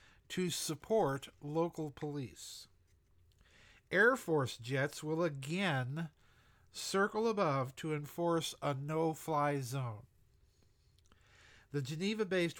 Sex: male